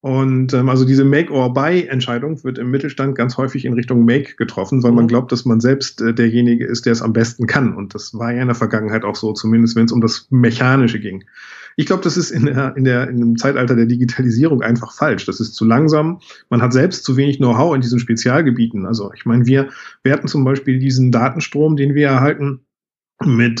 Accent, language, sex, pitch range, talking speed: German, German, male, 115-135 Hz, 215 wpm